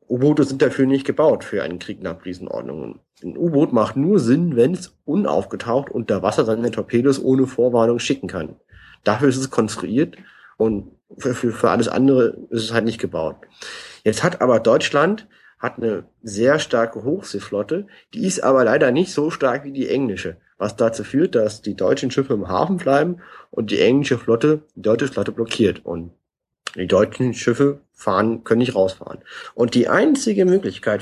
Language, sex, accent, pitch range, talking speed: German, male, German, 110-150 Hz, 175 wpm